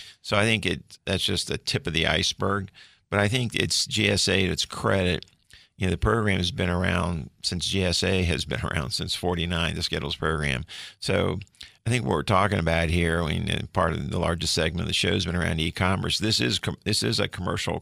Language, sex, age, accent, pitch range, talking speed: English, male, 50-69, American, 85-95 Hz, 215 wpm